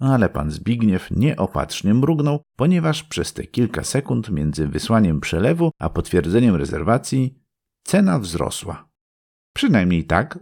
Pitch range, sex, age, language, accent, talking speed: 80-130 Hz, male, 50-69, Polish, native, 115 wpm